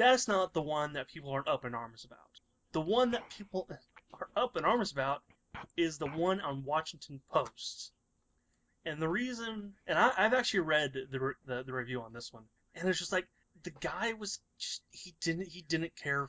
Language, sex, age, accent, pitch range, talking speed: English, male, 30-49, American, 135-185 Hz, 205 wpm